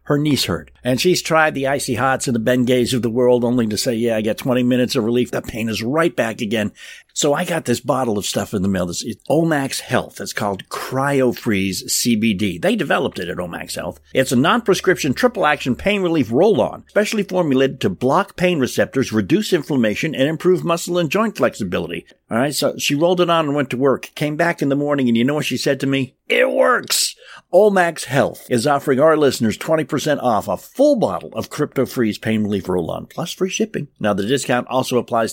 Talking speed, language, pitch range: 215 wpm, English, 120-170 Hz